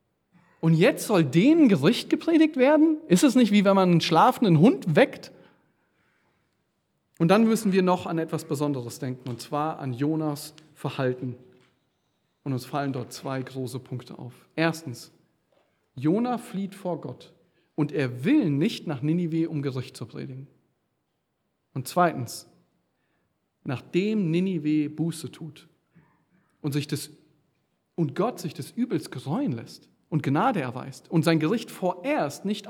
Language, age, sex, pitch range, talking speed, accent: German, 40-59, male, 140-205 Hz, 145 wpm, German